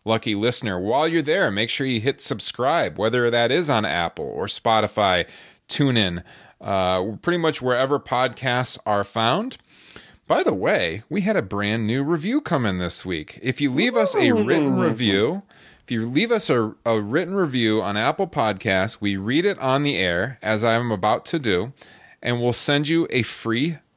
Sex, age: male, 30-49